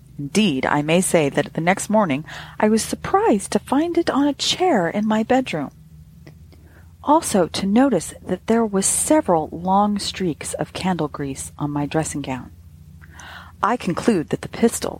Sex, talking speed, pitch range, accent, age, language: female, 155 wpm, 135-225 Hz, American, 40-59, English